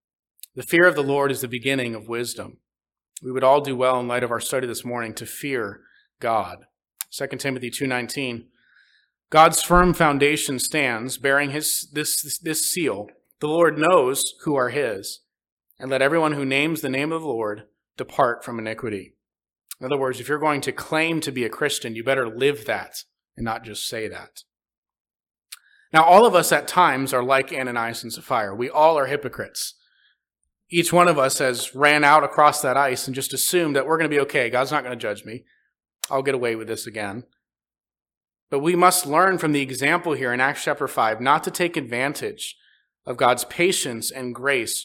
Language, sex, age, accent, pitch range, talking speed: English, male, 30-49, American, 125-165 Hz, 195 wpm